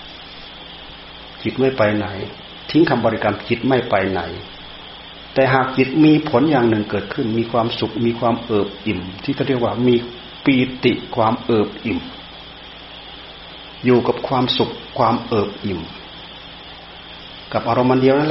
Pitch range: 110-135 Hz